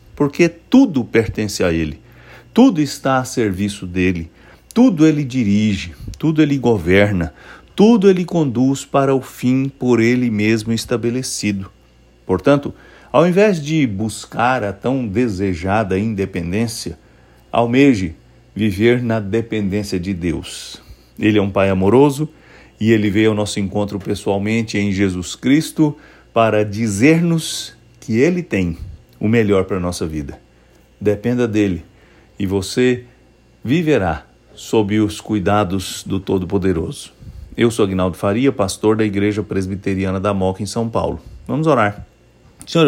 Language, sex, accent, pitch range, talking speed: English, male, Brazilian, 95-125 Hz, 130 wpm